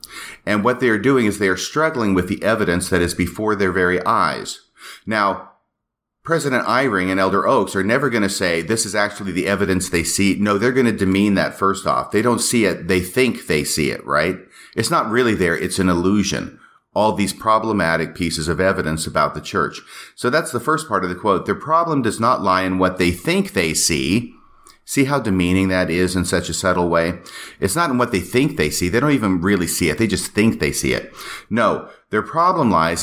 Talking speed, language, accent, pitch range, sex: 225 wpm, English, American, 90-110 Hz, male